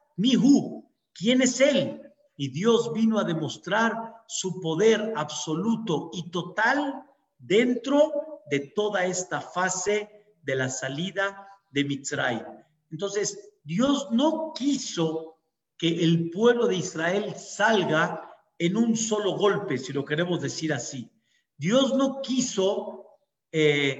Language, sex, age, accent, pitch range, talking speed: Spanish, male, 50-69, Mexican, 165-235 Hz, 115 wpm